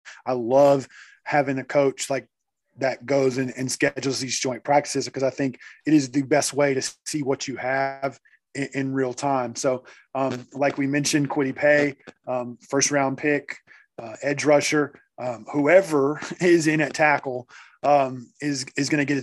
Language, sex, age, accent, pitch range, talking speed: English, male, 20-39, American, 130-145 Hz, 180 wpm